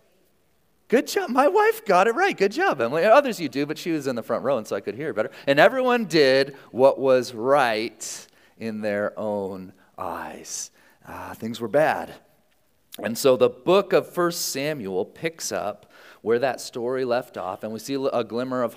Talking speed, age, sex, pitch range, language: 190 wpm, 40-59, male, 115-160 Hz, English